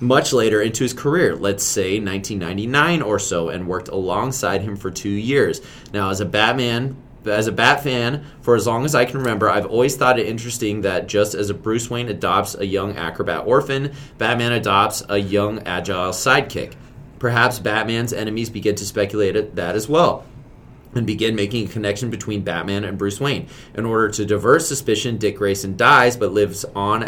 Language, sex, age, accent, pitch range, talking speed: English, male, 20-39, American, 100-130 Hz, 190 wpm